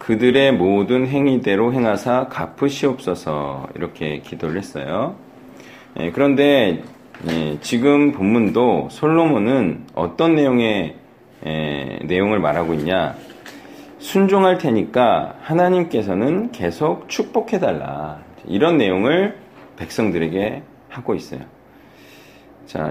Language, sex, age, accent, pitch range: Korean, male, 40-59, native, 100-160 Hz